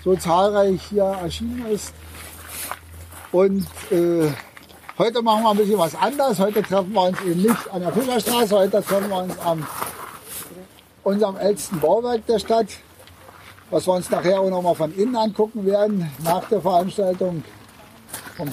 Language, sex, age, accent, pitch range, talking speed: German, male, 60-79, German, 165-210 Hz, 150 wpm